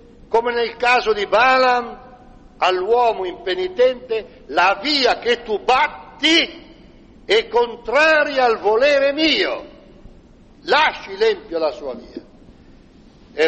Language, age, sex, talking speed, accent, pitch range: Italian, 60-79, male, 100 wpm, native, 150-245 Hz